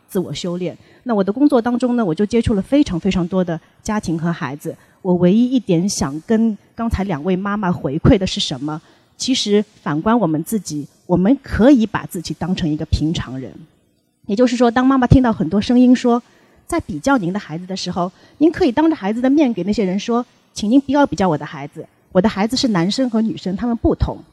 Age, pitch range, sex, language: 30-49, 170-245 Hz, female, Chinese